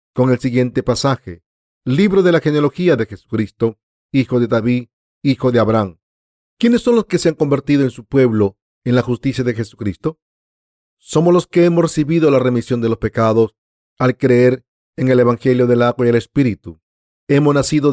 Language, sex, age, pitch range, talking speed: Spanish, male, 40-59, 115-155 Hz, 175 wpm